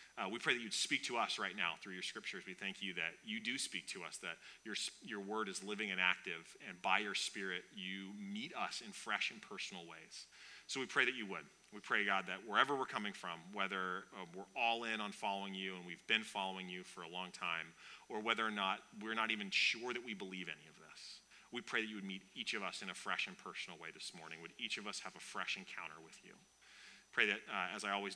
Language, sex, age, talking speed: English, male, 30-49, 255 wpm